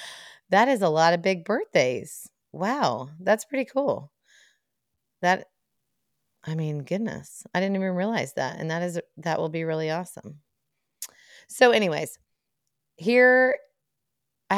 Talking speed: 130 wpm